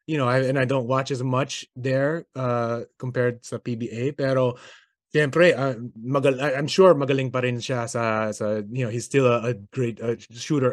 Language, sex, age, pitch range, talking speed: Filipino, male, 20-39, 120-140 Hz, 190 wpm